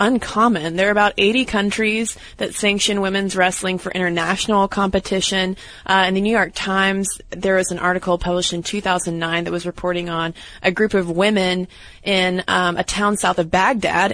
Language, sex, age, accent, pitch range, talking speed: English, female, 20-39, American, 175-210 Hz, 180 wpm